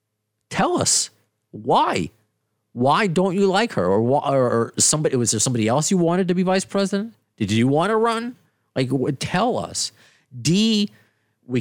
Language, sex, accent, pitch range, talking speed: English, male, American, 100-150 Hz, 165 wpm